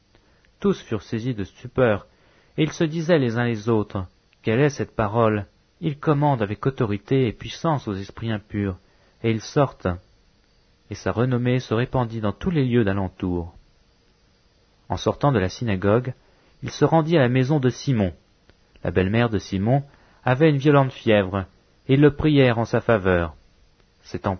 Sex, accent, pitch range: male, French, 95-130 Hz